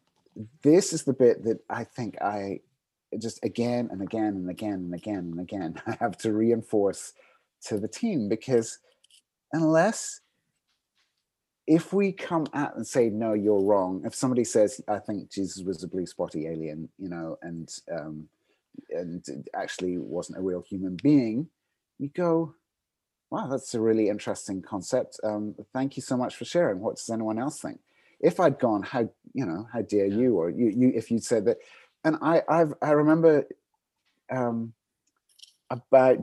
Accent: British